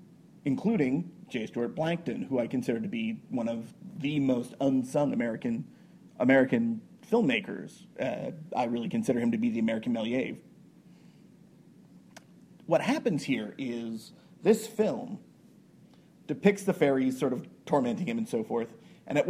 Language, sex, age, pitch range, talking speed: English, male, 40-59, 135-210 Hz, 140 wpm